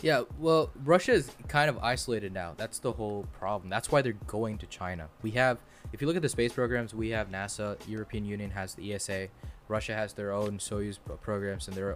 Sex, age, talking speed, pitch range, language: male, 20-39, 215 wpm, 100-120 Hz, English